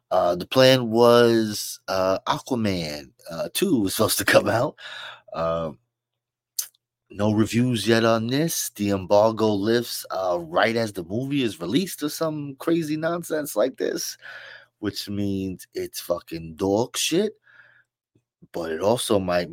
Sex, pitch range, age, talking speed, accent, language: male, 85-120 Hz, 30-49, 140 wpm, American, English